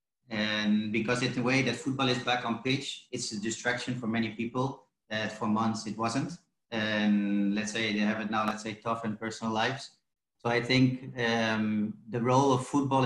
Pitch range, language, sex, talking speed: 110-125 Hz, English, male, 200 wpm